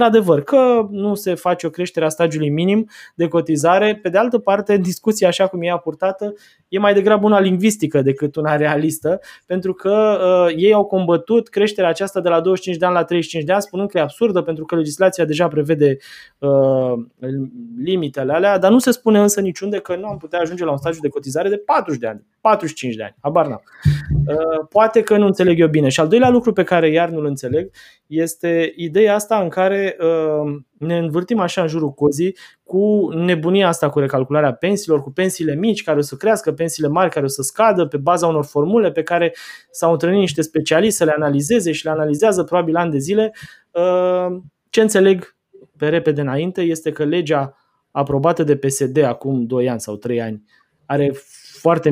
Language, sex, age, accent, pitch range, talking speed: Romanian, male, 20-39, native, 145-195 Hz, 195 wpm